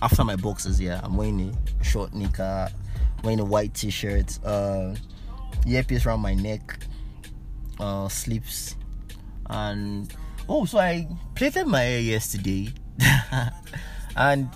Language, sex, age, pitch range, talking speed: English, male, 20-39, 95-120 Hz, 120 wpm